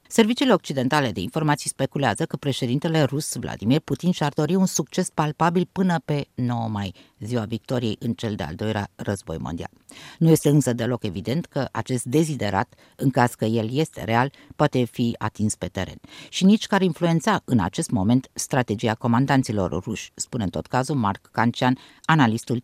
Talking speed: 170 wpm